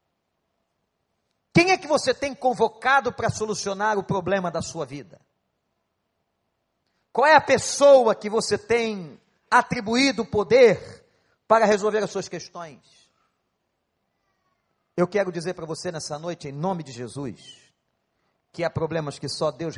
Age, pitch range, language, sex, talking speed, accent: 50-69, 155-210 Hz, Portuguese, male, 135 wpm, Brazilian